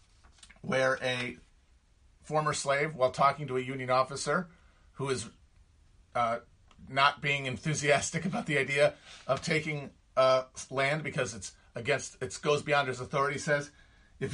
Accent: American